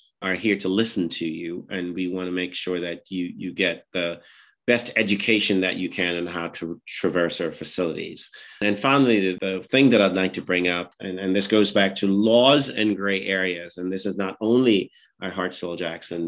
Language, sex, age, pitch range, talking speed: English, male, 40-59, 90-105 Hz, 215 wpm